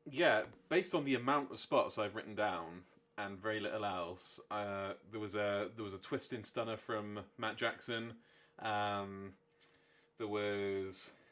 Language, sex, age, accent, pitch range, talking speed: English, male, 20-39, British, 100-115 Hz, 160 wpm